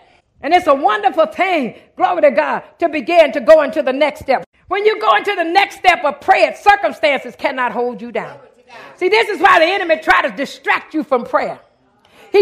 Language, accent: English, American